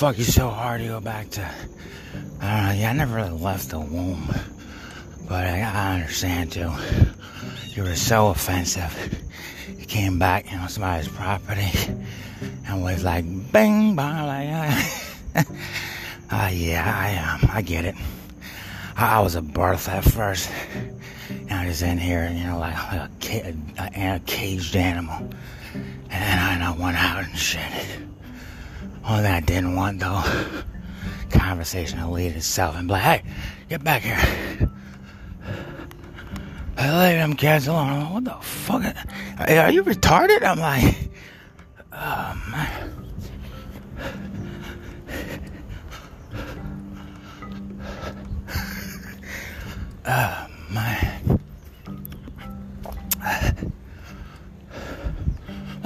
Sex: male